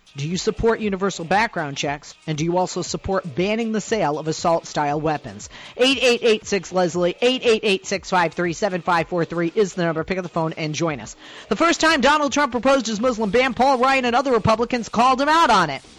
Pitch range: 180-250 Hz